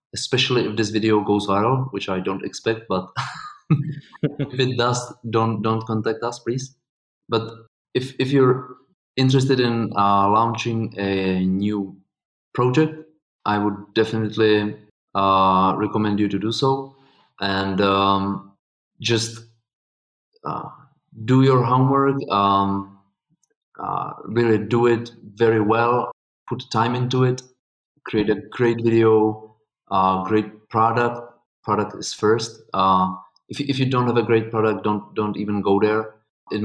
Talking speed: 135 wpm